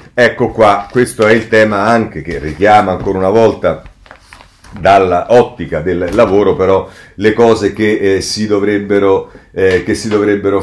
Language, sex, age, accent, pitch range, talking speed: Italian, male, 40-59, native, 95-125 Hz, 140 wpm